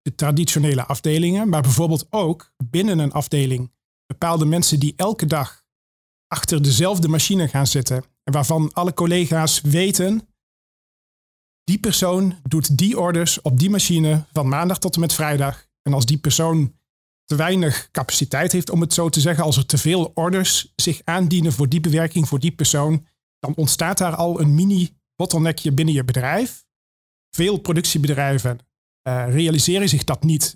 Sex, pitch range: male, 145-175 Hz